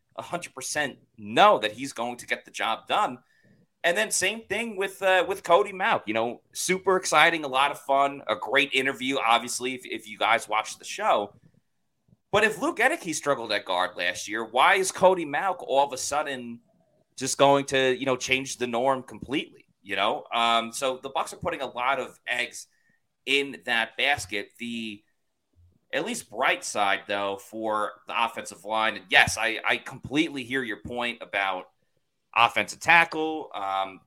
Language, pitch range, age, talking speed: English, 115-150 Hz, 30-49, 180 wpm